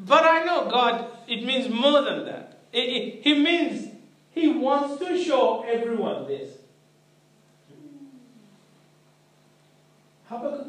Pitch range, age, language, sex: 175-265 Hz, 40-59, English, male